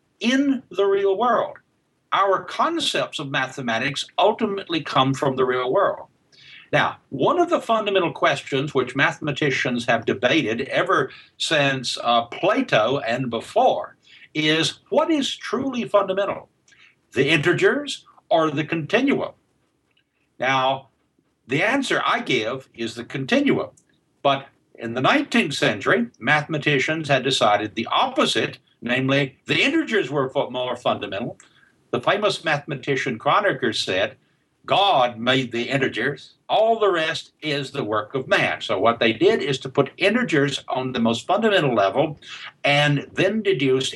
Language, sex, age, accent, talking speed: English, male, 60-79, American, 130 wpm